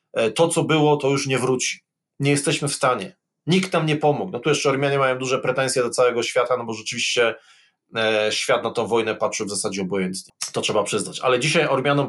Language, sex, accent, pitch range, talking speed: Polish, male, native, 125-160 Hz, 210 wpm